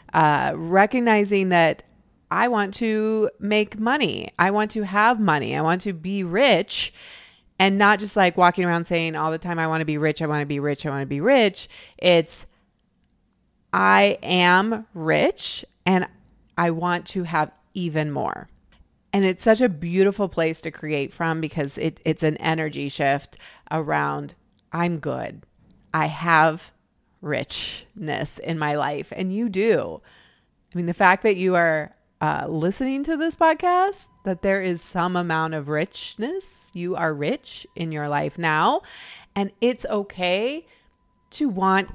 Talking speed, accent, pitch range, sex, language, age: 160 wpm, American, 155-205 Hz, female, English, 30-49